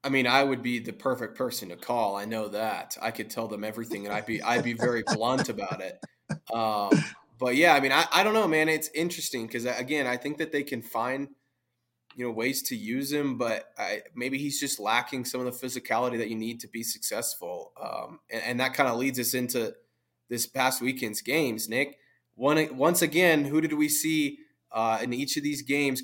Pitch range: 115-135 Hz